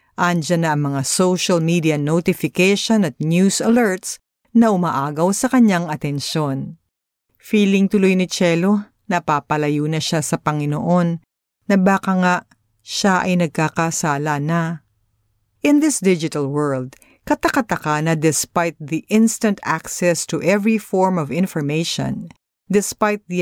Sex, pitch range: female, 150-195 Hz